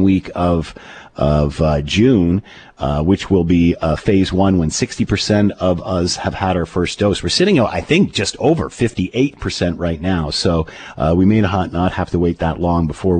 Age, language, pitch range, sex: 40-59, English, 85-105 Hz, male